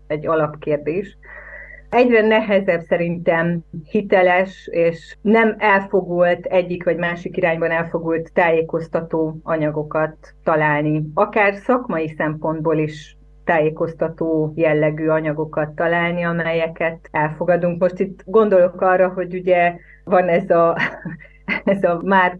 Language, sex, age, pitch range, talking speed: Hungarian, female, 30-49, 165-185 Hz, 100 wpm